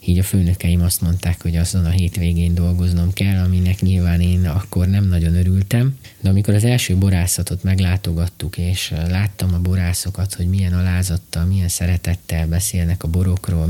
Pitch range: 90-100 Hz